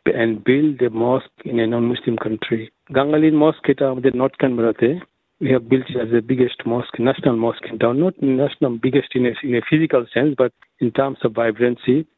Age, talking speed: 50-69, 190 wpm